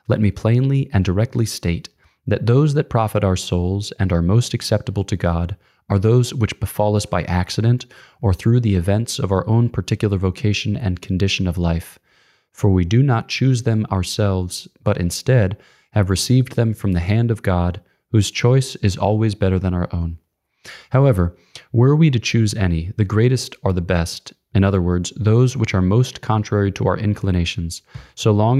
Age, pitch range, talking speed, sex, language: 20-39, 90-115 Hz, 185 wpm, male, English